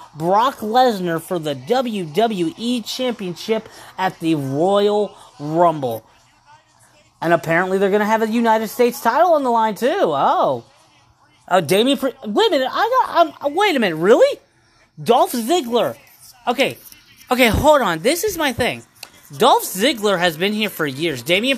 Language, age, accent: English, 30-49, American